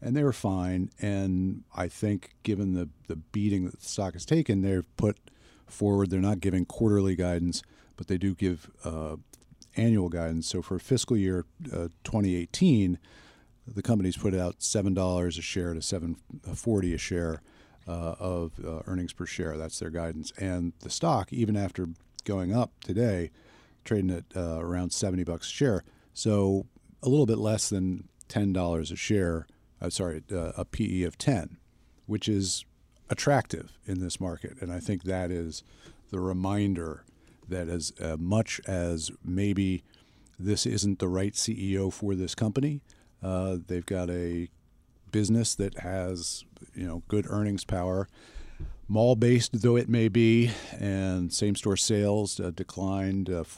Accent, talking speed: American, 155 wpm